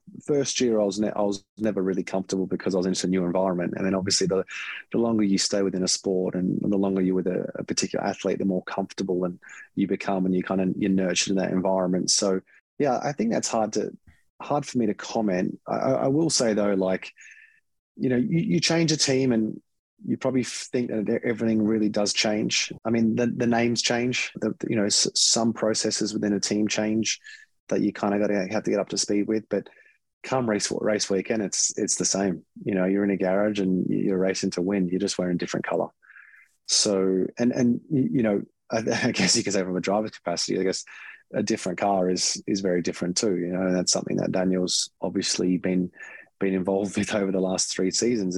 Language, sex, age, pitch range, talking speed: English, male, 20-39, 95-110 Hz, 225 wpm